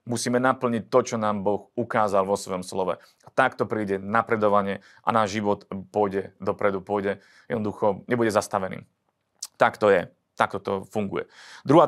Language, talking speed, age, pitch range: Slovak, 160 wpm, 30-49, 110-130 Hz